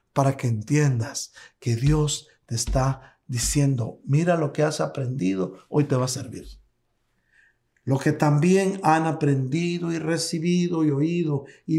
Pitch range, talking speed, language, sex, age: 140-185 Hz, 145 wpm, Spanish, male, 60-79